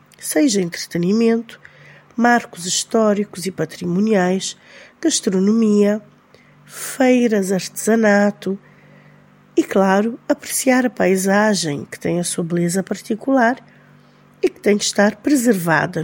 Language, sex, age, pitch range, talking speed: Portuguese, female, 50-69, 180-245 Hz, 95 wpm